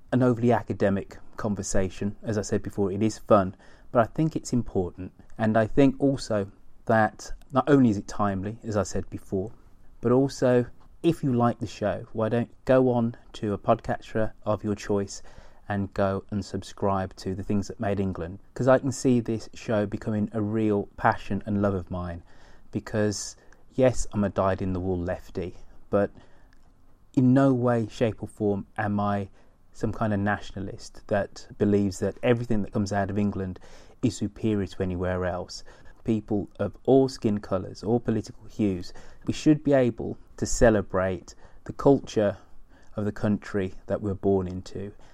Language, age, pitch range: English, 30-49, 95-115 Hz